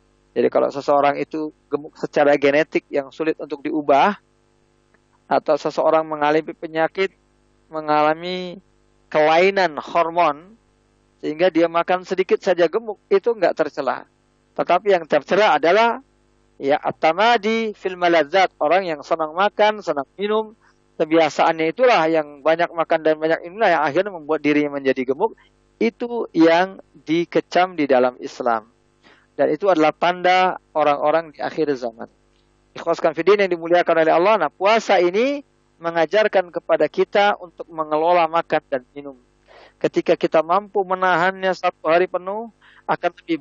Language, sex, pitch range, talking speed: English, male, 155-195 Hz, 130 wpm